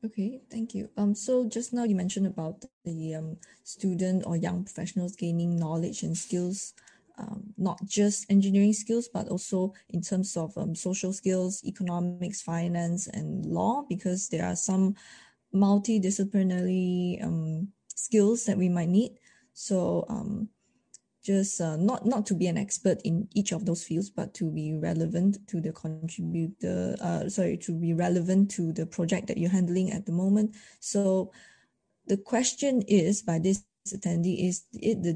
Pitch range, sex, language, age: 175-205 Hz, female, Chinese, 20-39